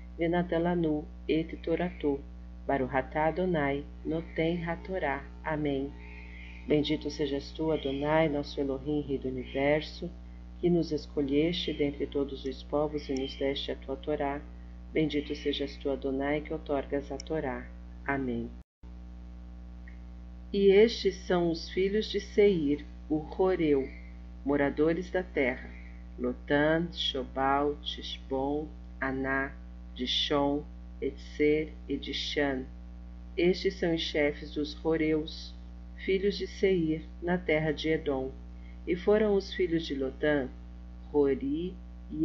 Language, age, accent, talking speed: Portuguese, 40-59, Brazilian, 120 wpm